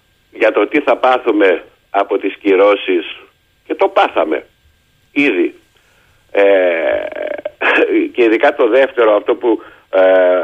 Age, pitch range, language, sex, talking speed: 50-69, 300-425 Hz, Greek, male, 115 wpm